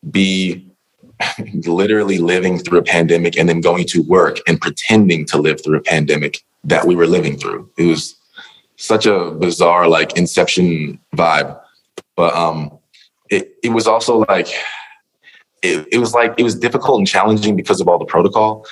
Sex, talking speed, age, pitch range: male, 165 wpm, 20-39, 80-105 Hz